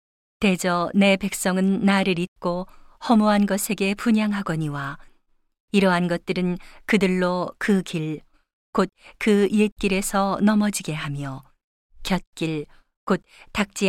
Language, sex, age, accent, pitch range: Korean, female, 40-59, native, 175-200 Hz